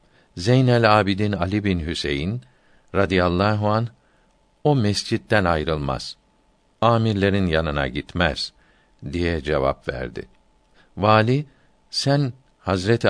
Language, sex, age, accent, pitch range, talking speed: Turkish, male, 60-79, native, 85-115 Hz, 85 wpm